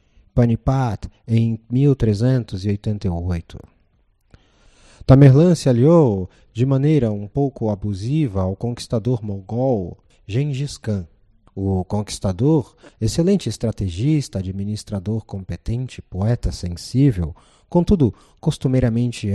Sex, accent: male, Brazilian